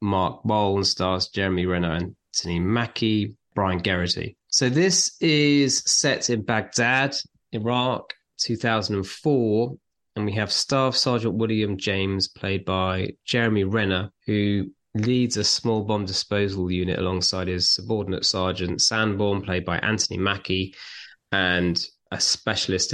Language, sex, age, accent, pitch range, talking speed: English, male, 20-39, British, 90-110 Hz, 125 wpm